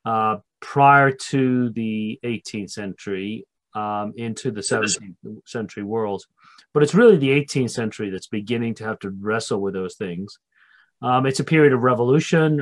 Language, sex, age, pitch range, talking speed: English, male, 40-59, 105-130 Hz, 155 wpm